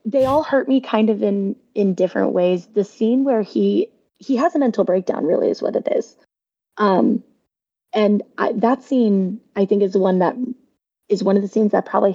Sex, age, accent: female, 20-39, American